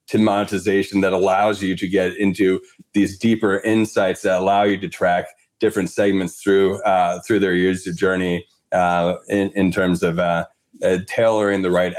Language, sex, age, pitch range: English, male, 30-49, 95-115 Hz